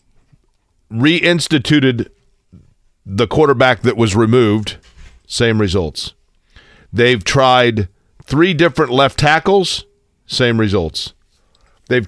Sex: male